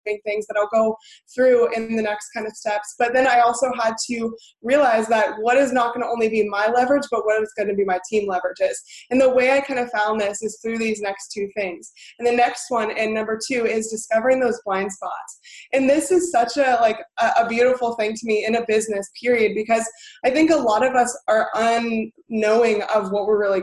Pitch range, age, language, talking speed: 215-245 Hz, 20-39, English, 230 wpm